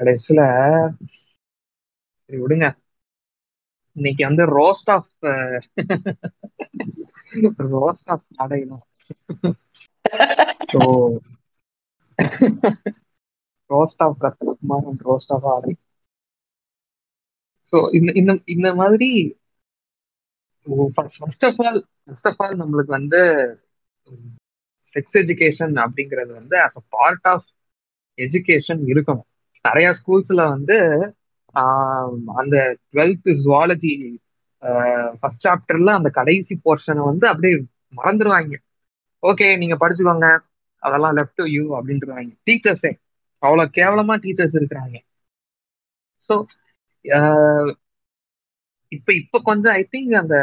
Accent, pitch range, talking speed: native, 130-180 Hz, 70 wpm